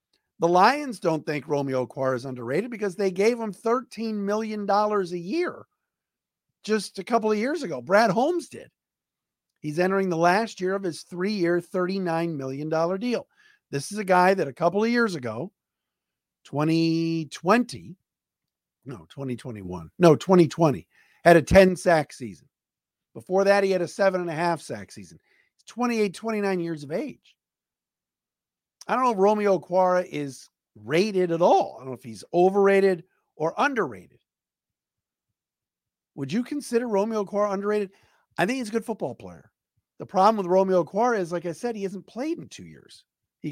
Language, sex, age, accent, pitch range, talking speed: English, male, 50-69, American, 165-215 Hz, 160 wpm